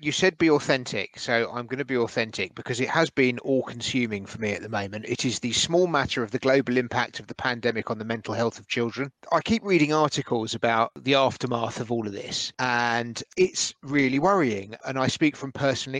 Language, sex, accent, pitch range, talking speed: English, male, British, 120-140 Hz, 220 wpm